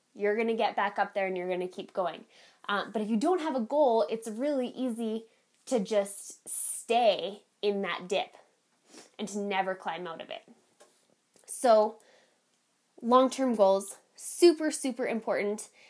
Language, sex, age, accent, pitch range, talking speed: English, female, 10-29, American, 185-230 Hz, 160 wpm